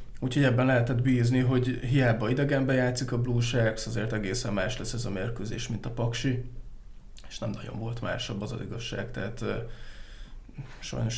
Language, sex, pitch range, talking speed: Hungarian, male, 110-125 Hz, 170 wpm